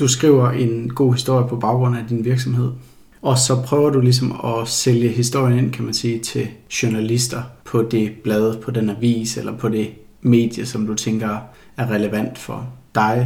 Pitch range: 115-125 Hz